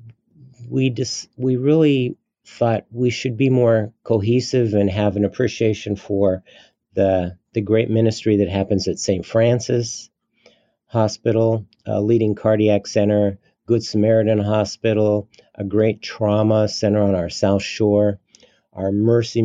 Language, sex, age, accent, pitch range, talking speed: English, male, 50-69, American, 100-115 Hz, 130 wpm